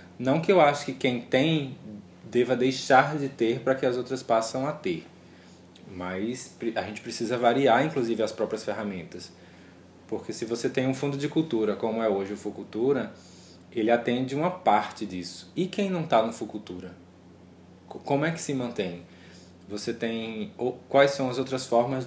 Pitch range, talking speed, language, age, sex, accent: 105-135 Hz, 170 wpm, Portuguese, 20-39, male, Brazilian